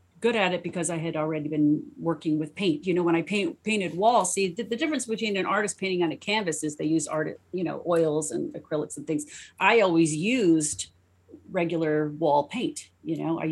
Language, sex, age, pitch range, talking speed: English, female, 40-59, 155-190 Hz, 215 wpm